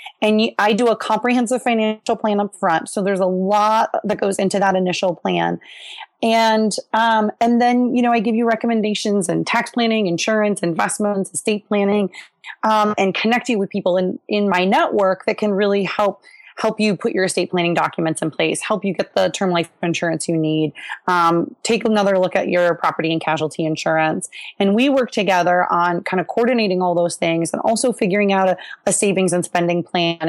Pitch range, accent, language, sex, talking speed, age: 175-215 Hz, American, English, female, 195 wpm, 30-49